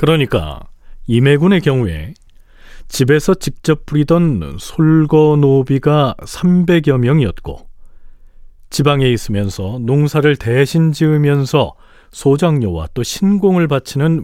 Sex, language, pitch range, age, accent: male, Korean, 120-165 Hz, 40-59, native